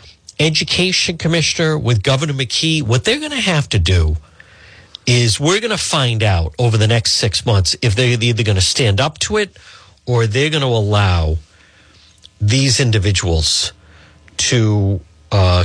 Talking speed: 155 wpm